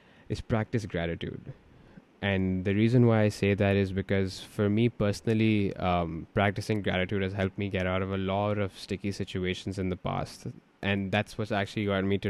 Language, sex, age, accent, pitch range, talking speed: English, male, 20-39, Indian, 90-105 Hz, 190 wpm